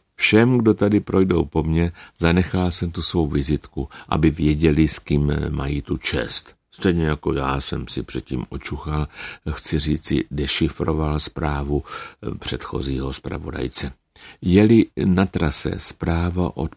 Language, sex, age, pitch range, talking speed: Czech, male, 60-79, 75-85 Hz, 130 wpm